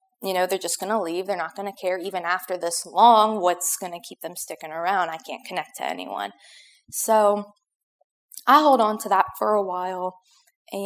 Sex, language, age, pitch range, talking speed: female, English, 20-39, 185-235 Hz, 210 wpm